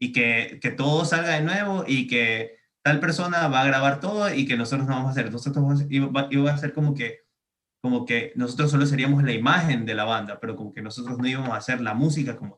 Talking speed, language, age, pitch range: 245 wpm, Spanish, 20-39, 125-145 Hz